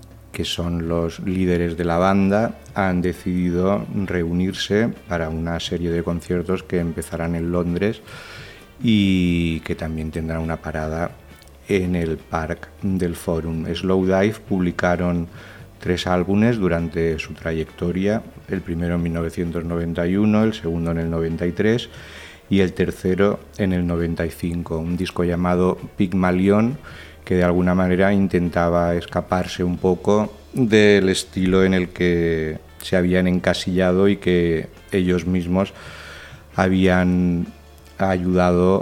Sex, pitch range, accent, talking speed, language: male, 85-95 Hz, Spanish, 120 wpm, Spanish